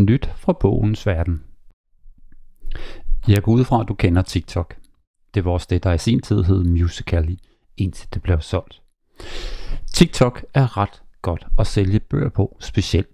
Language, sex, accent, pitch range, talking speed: Danish, male, native, 95-125 Hz, 160 wpm